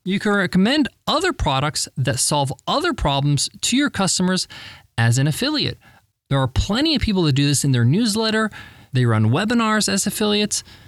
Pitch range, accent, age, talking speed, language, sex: 130-195 Hz, American, 20-39, 170 wpm, English, male